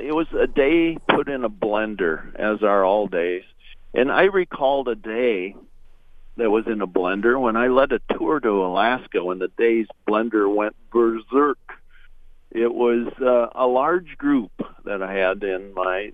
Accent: American